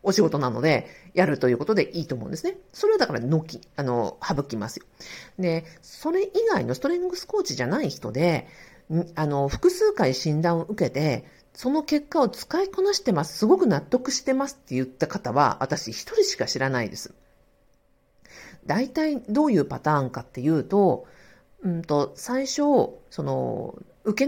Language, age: Japanese, 50-69